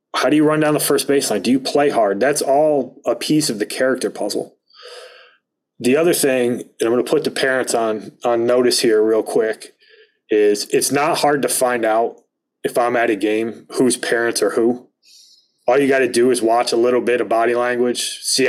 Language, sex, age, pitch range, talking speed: English, male, 30-49, 115-155 Hz, 215 wpm